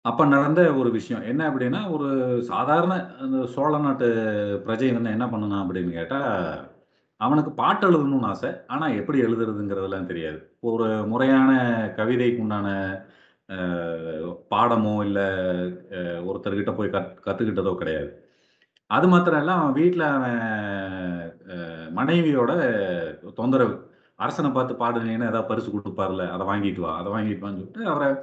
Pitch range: 100-130 Hz